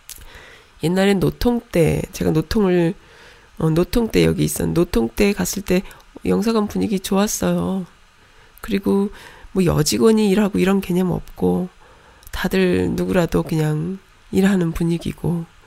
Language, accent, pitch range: Korean, native, 160-200 Hz